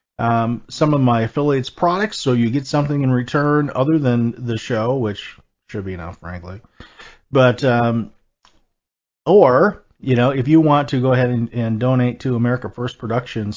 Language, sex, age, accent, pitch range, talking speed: English, male, 40-59, American, 110-130 Hz, 175 wpm